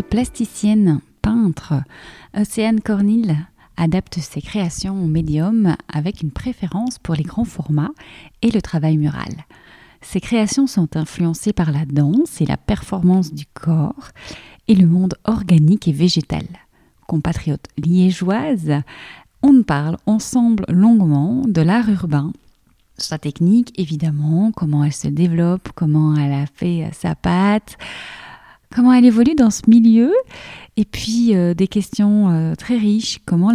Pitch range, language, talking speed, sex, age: 160-215 Hz, French, 135 wpm, female, 30-49